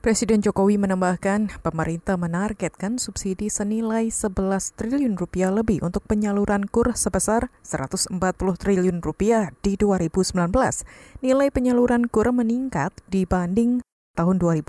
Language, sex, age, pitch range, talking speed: Indonesian, female, 20-39, 175-220 Hz, 105 wpm